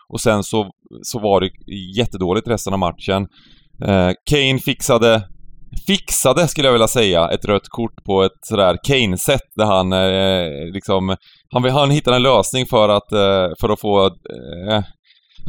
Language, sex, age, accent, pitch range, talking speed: Swedish, male, 20-39, native, 100-130 Hz, 165 wpm